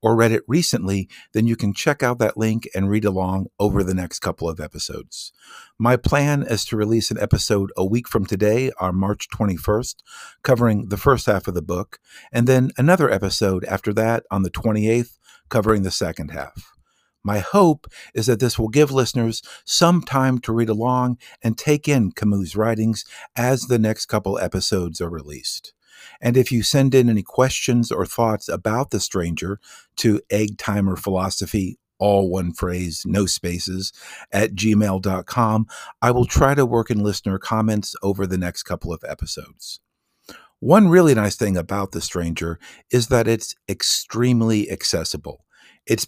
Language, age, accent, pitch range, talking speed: English, 50-69, American, 95-120 Hz, 170 wpm